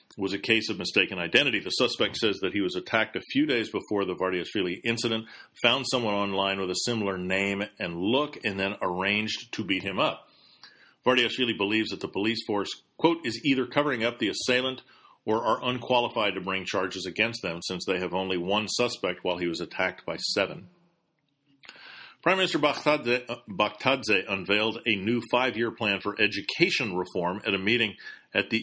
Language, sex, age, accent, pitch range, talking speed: English, male, 40-59, American, 100-125 Hz, 180 wpm